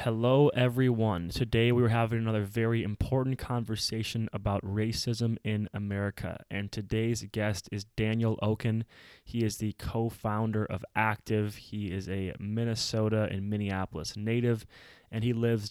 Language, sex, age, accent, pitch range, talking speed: English, male, 20-39, American, 100-115 Hz, 135 wpm